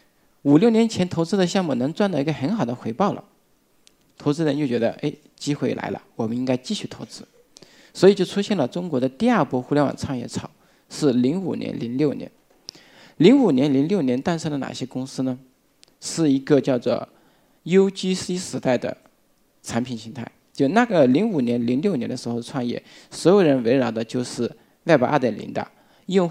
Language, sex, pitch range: Chinese, male, 125-185 Hz